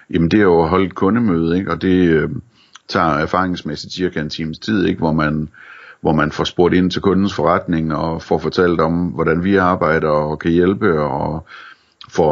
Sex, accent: male, native